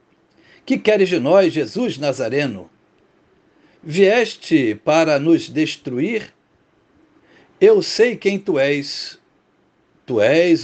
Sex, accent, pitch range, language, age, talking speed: male, Brazilian, 150-205 Hz, Portuguese, 60-79, 95 wpm